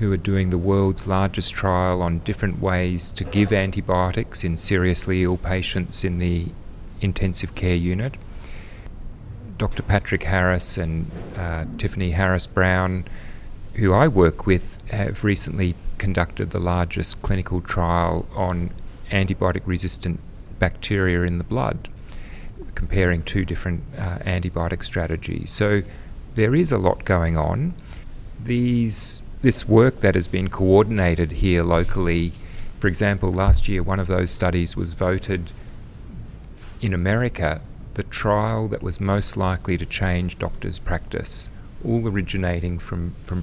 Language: English